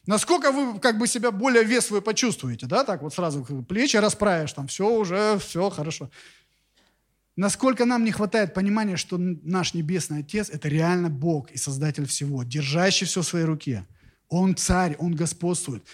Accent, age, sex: native, 30-49, male